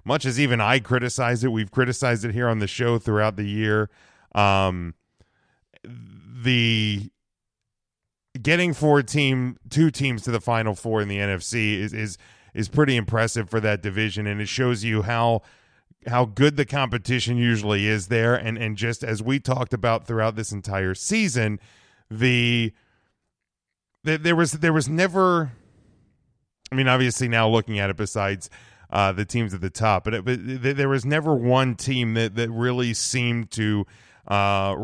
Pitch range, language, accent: 105-125 Hz, English, American